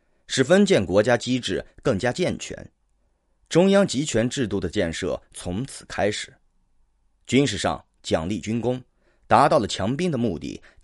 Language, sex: Chinese, male